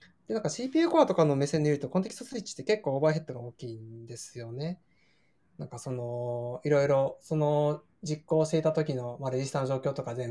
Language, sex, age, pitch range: Japanese, male, 20-39, 125-160 Hz